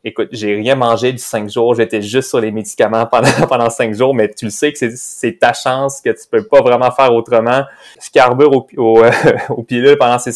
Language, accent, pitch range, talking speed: French, Canadian, 110-140 Hz, 240 wpm